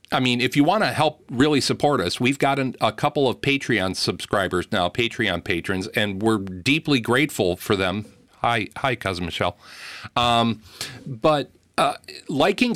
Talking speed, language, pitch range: 155 wpm, English, 110-145 Hz